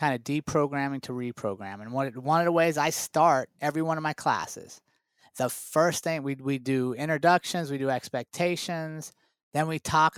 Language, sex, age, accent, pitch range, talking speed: English, male, 30-49, American, 145-185 Hz, 175 wpm